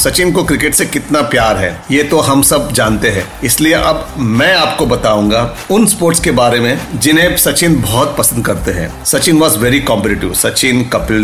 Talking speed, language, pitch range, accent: 185 wpm, Hindi, 110-140 Hz, native